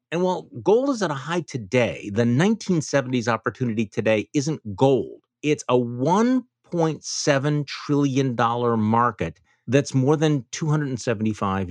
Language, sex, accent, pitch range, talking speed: English, male, American, 105-140 Hz, 120 wpm